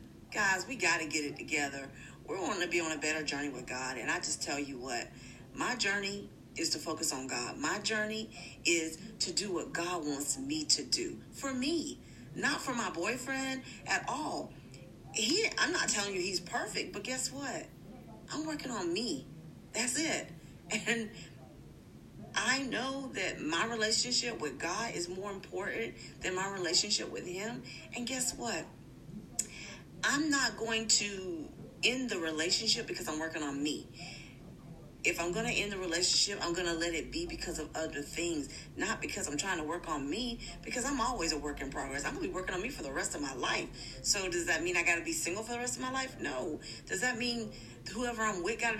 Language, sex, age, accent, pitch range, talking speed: English, female, 40-59, American, 160-235 Hz, 205 wpm